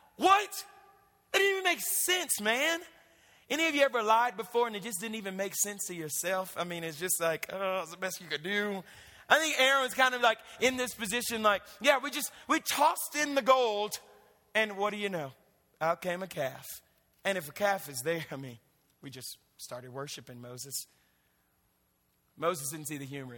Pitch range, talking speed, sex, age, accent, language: 140-210 Hz, 205 wpm, male, 30-49, American, English